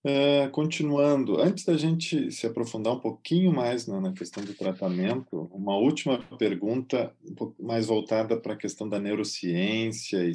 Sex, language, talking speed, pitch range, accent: male, Portuguese, 160 wpm, 105-130 Hz, Brazilian